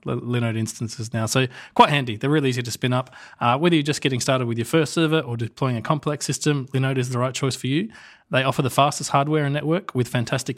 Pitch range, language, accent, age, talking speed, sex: 125-150 Hz, English, Australian, 20-39, 245 wpm, male